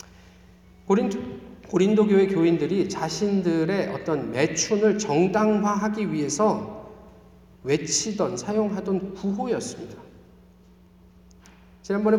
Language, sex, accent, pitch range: Korean, male, native, 165-220 Hz